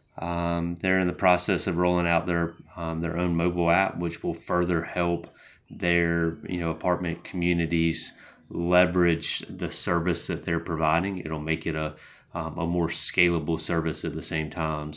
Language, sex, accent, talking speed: English, male, American, 170 wpm